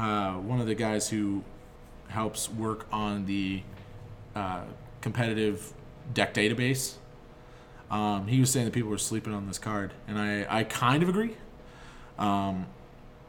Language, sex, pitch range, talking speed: English, male, 110-145 Hz, 145 wpm